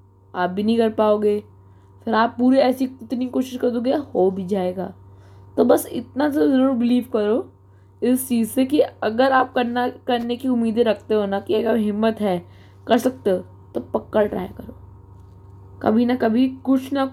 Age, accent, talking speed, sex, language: 20-39, native, 180 wpm, female, Hindi